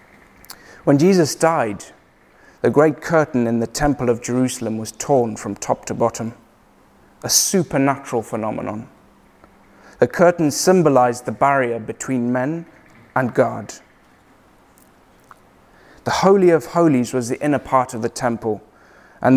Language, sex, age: English, male, 30-49